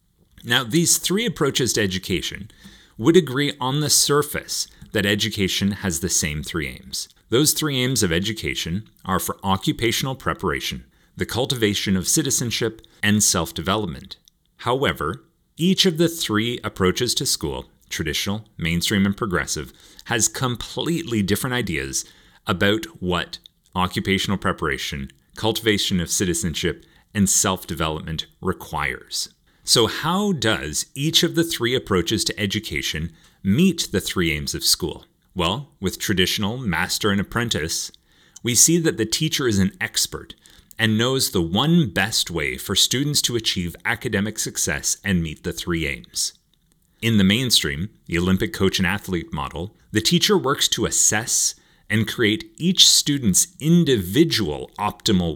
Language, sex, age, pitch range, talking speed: English, male, 40-59, 95-135 Hz, 135 wpm